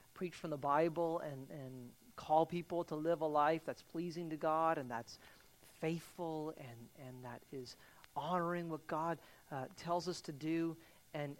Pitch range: 125-155 Hz